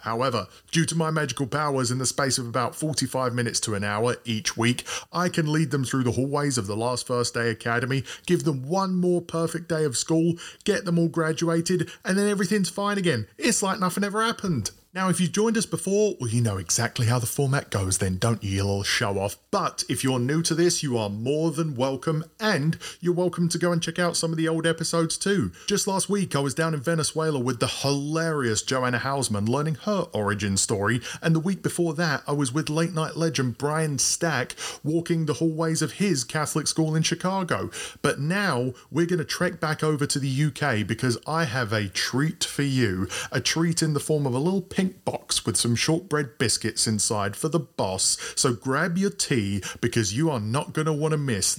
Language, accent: English, British